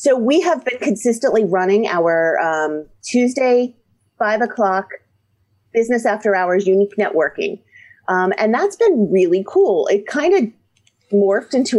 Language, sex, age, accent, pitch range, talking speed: English, female, 30-49, American, 195-255 Hz, 135 wpm